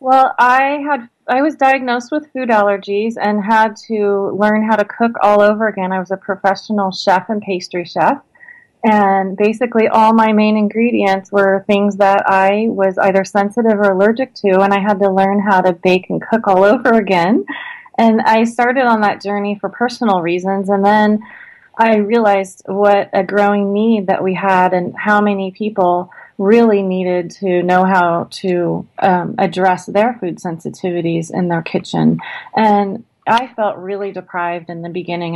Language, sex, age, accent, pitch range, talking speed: English, female, 30-49, American, 185-225 Hz, 175 wpm